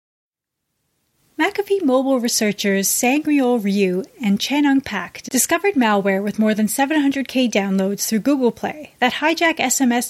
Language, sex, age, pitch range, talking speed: English, female, 30-49, 205-270 Hz, 125 wpm